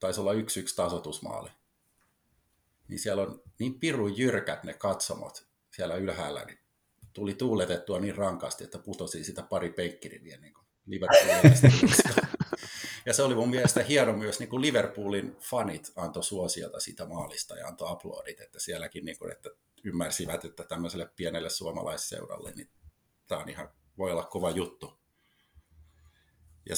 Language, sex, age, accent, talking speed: Finnish, male, 50-69, native, 145 wpm